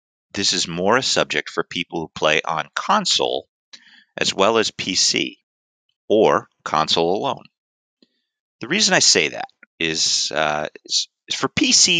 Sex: male